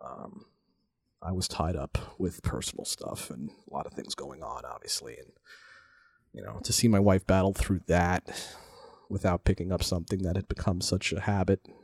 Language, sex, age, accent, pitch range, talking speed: English, male, 30-49, American, 95-105 Hz, 180 wpm